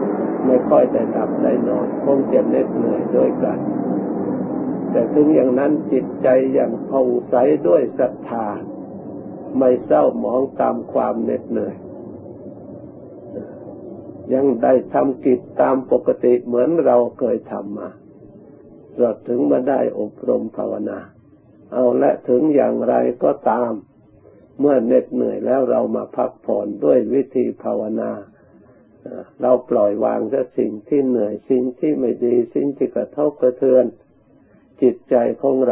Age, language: 60-79, Thai